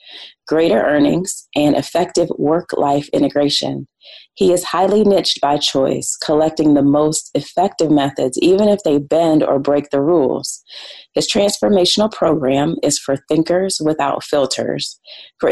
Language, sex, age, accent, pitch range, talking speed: English, female, 30-49, American, 145-180 Hz, 130 wpm